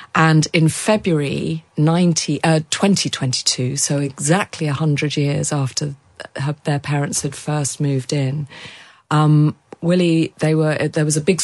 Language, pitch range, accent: English, 140-160 Hz, British